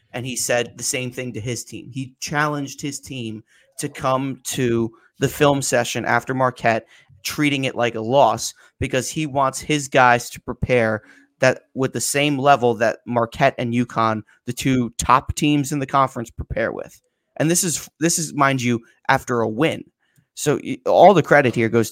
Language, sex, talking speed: English, male, 185 wpm